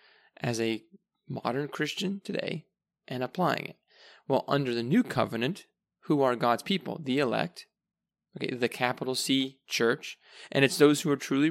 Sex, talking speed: male, 155 wpm